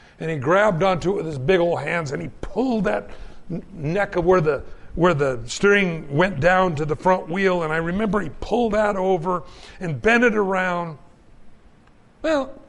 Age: 60-79